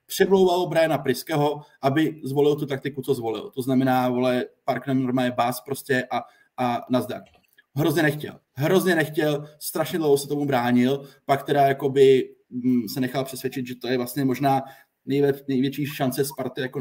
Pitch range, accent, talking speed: 135-160 Hz, native, 155 wpm